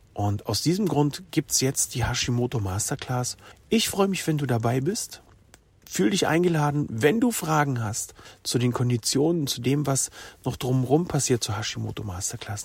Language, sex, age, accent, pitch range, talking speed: German, male, 40-59, German, 120-165 Hz, 170 wpm